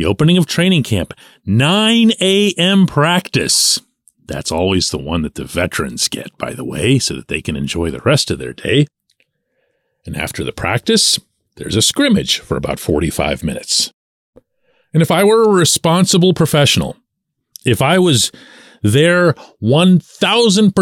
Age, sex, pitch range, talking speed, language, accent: 40-59, male, 115-175 Hz, 145 wpm, English, American